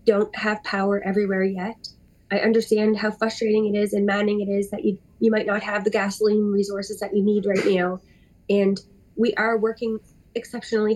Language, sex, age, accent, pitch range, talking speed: English, female, 20-39, American, 200-225 Hz, 185 wpm